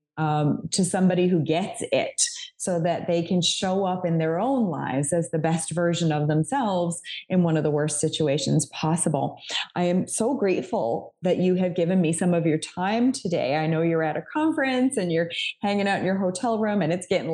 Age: 30-49